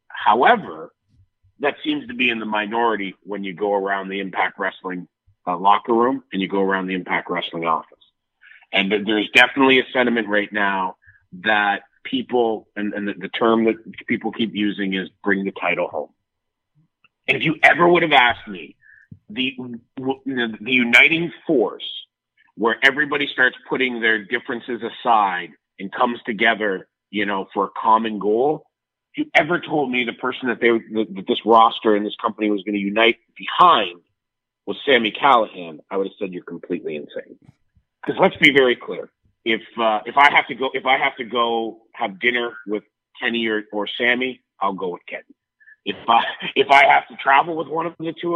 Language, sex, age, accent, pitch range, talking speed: English, male, 30-49, American, 100-135 Hz, 180 wpm